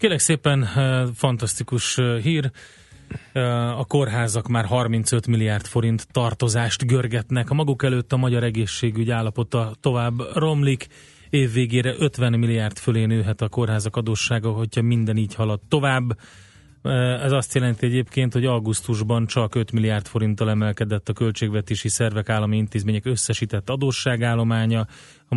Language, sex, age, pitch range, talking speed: Hungarian, male, 30-49, 110-125 Hz, 125 wpm